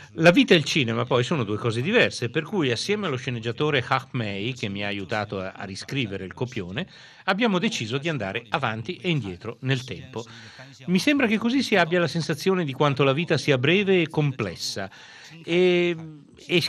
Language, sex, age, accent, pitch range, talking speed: Italian, male, 40-59, native, 115-175 Hz, 185 wpm